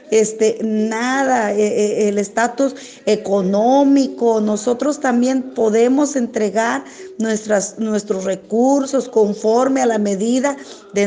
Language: Spanish